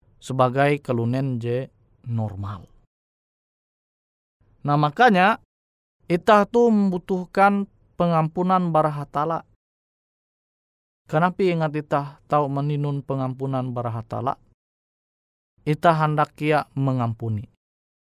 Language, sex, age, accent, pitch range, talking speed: Indonesian, male, 20-39, native, 120-165 Hz, 75 wpm